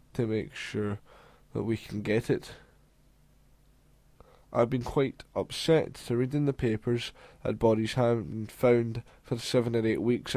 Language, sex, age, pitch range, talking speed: English, male, 10-29, 110-125 Hz, 150 wpm